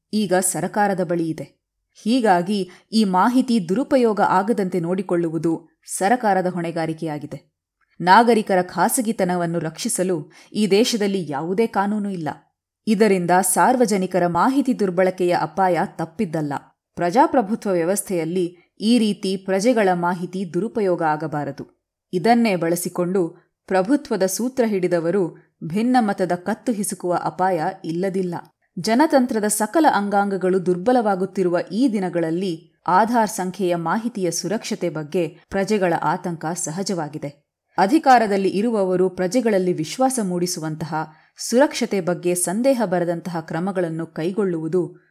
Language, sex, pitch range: Kannada, female, 170-210 Hz